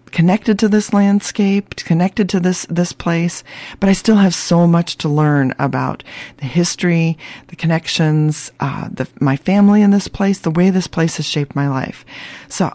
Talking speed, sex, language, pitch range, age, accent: 180 wpm, female, English, 145-200 Hz, 40-59, American